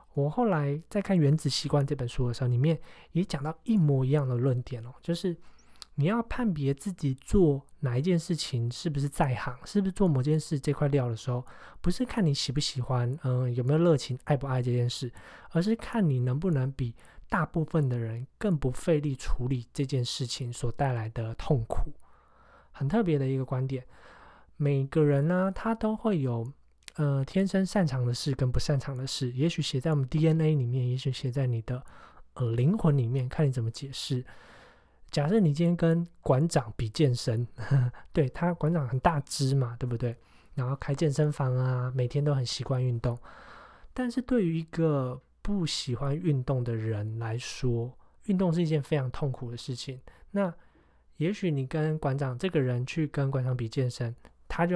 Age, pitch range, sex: 20-39, 125-160 Hz, male